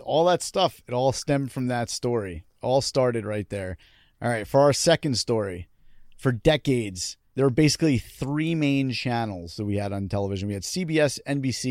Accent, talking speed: American, 185 wpm